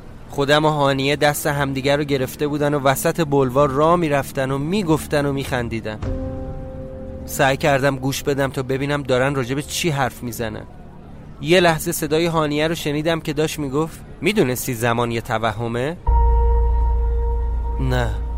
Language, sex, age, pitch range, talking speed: Persian, male, 20-39, 135-190 Hz, 150 wpm